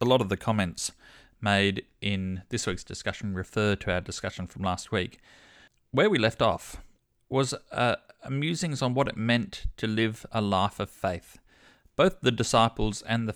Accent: Australian